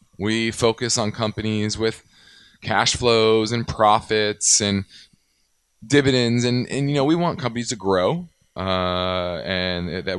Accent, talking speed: American, 135 wpm